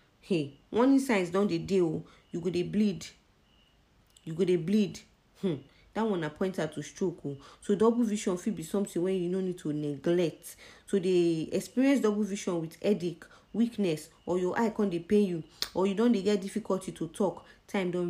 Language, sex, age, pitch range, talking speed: English, female, 30-49, 165-205 Hz, 190 wpm